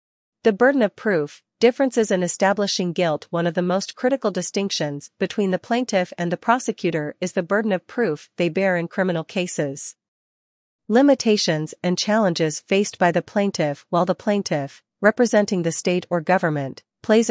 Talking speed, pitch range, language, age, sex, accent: 160 wpm, 165-205 Hz, English, 40-59, female, American